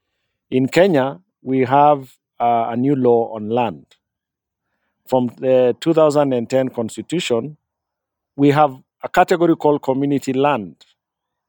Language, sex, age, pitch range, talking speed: English, male, 50-69, 120-150 Hz, 105 wpm